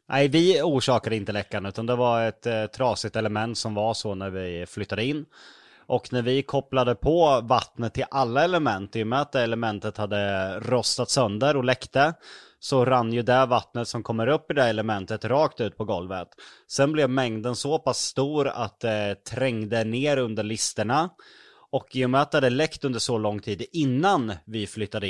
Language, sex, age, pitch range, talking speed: Swedish, male, 20-39, 110-140 Hz, 190 wpm